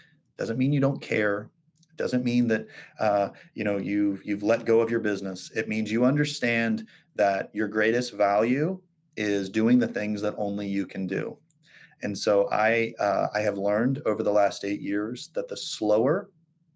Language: English